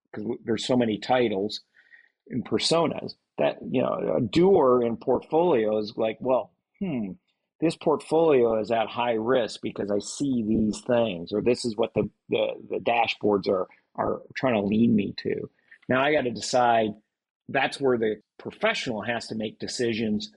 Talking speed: 165 wpm